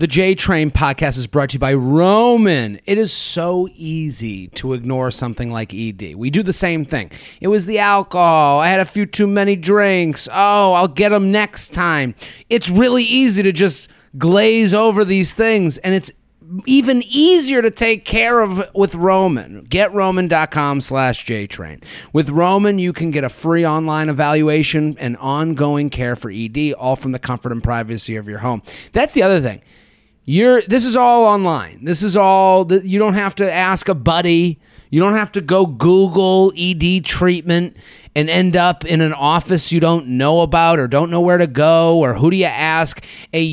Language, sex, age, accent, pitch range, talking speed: English, male, 30-49, American, 135-190 Hz, 190 wpm